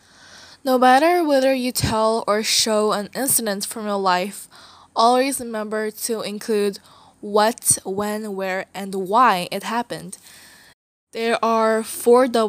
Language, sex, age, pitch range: Korean, female, 10-29, 205-240 Hz